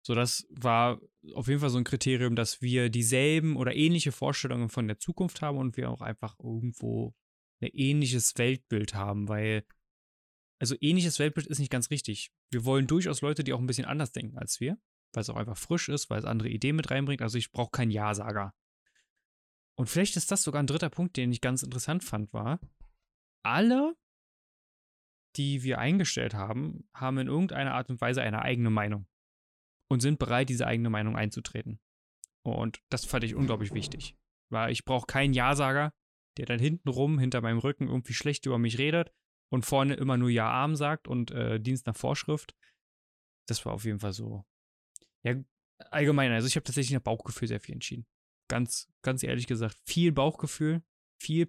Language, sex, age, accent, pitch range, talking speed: German, male, 20-39, German, 110-145 Hz, 185 wpm